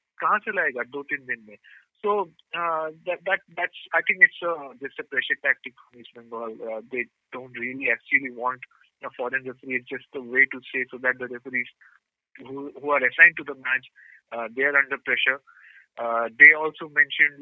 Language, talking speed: English, 175 wpm